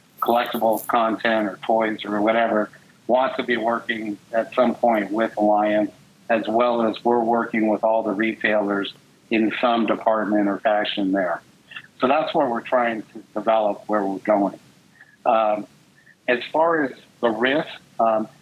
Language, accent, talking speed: English, American, 155 wpm